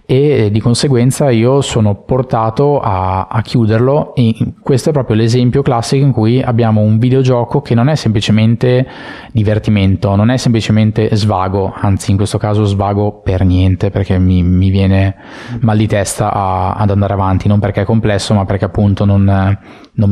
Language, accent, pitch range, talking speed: Italian, native, 100-120 Hz, 165 wpm